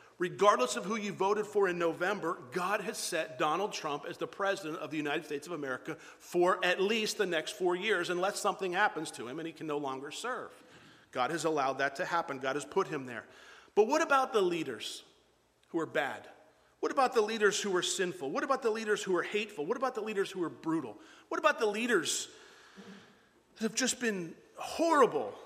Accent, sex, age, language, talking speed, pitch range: American, male, 40-59, English, 210 wpm, 165-225 Hz